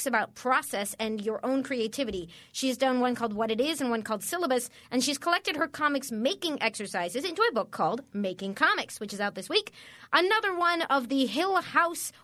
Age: 30-49